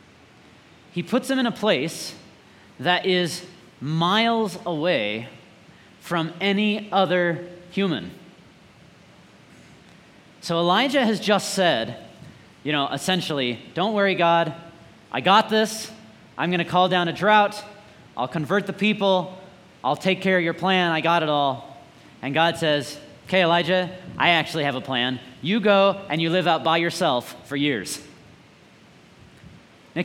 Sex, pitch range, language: male, 165-235 Hz, English